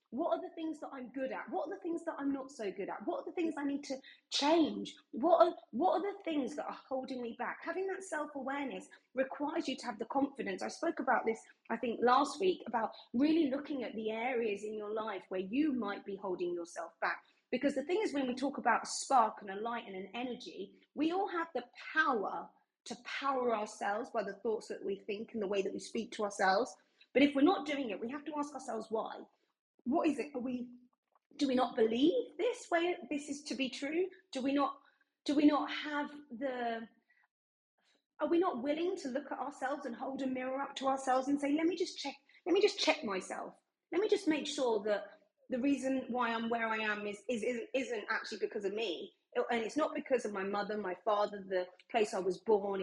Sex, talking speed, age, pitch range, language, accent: female, 235 wpm, 30-49, 225-305 Hz, English, British